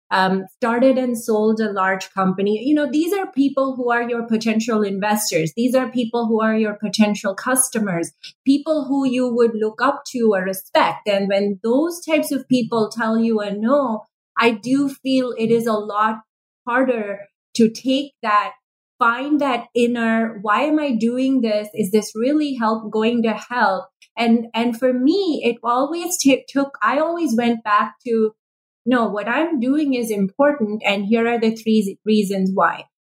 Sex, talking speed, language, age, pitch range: female, 175 wpm, English, 30-49, 210-255 Hz